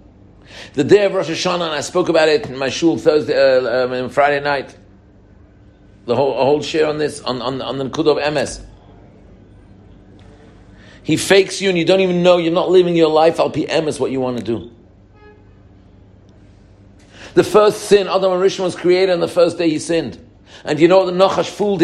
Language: English